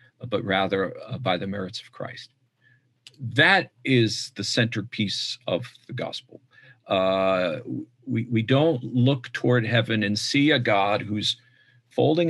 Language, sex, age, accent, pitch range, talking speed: English, male, 50-69, American, 105-130 Hz, 135 wpm